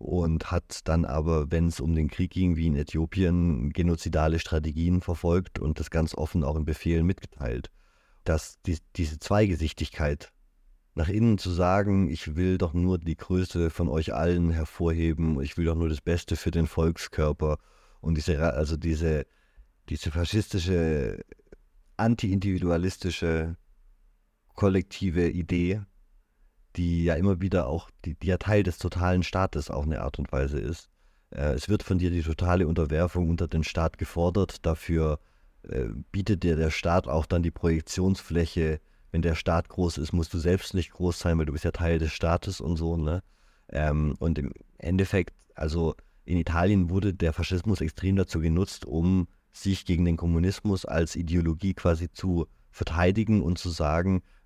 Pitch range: 80-90 Hz